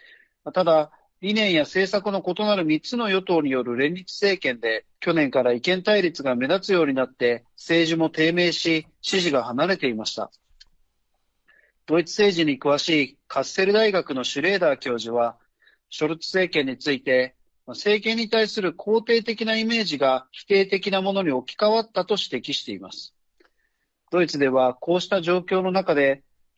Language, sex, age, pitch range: Japanese, male, 40-59, 140-195 Hz